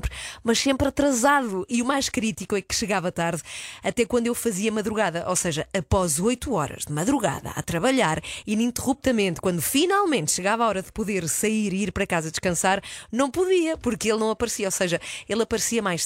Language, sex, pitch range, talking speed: Portuguese, female, 185-235 Hz, 185 wpm